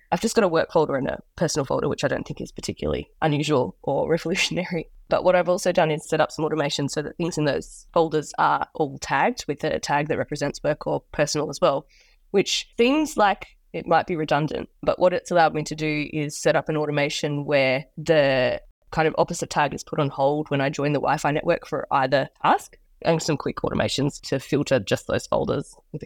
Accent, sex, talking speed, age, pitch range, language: Australian, female, 220 wpm, 20-39, 145-170 Hz, English